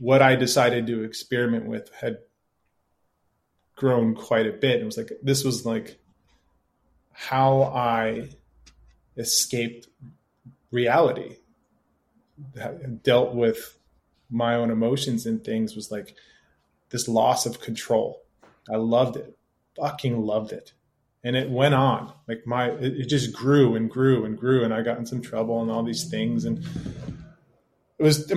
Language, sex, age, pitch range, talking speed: English, male, 20-39, 115-135 Hz, 145 wpm